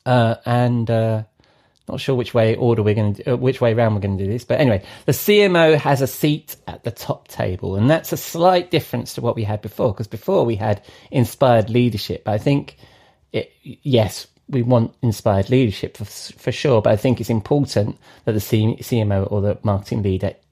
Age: 30-49